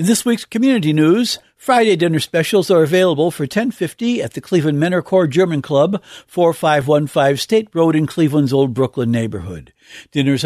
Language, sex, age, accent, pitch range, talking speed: English, male, 60-79, American, 150-205 Hz, 160 wpm